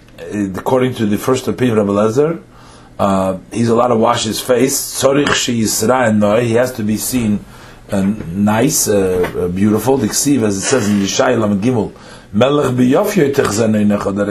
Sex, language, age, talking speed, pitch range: male, English, 40-59, 145 wpm, 105-130 Hz